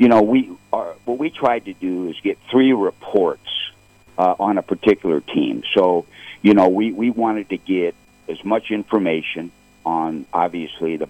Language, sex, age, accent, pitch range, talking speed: English, male, 60-79, American, 85-110 Hz, 175 wpm